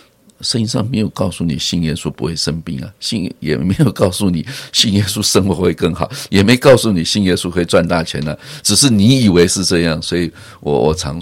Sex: male